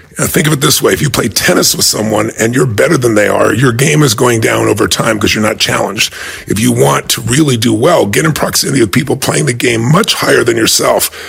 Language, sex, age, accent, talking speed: English, female, 40-59, American, 255 wpm